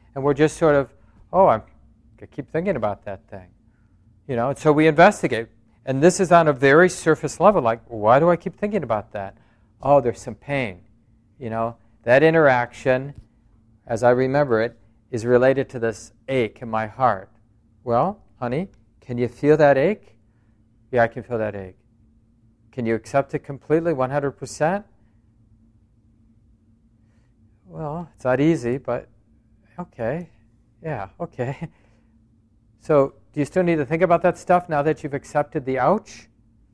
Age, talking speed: 40-59, 160 wpm